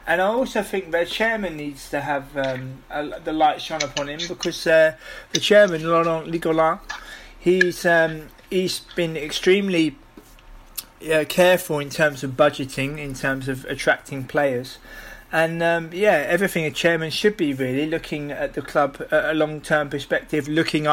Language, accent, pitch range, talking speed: English, British, 140-165 Hz, 160 wpm